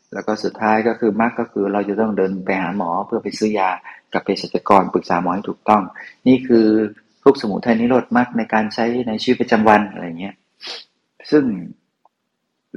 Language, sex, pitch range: Thai, male, 100-120 Hz